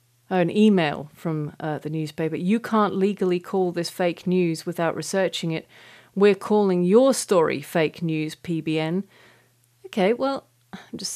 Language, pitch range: English, 155-195 Hz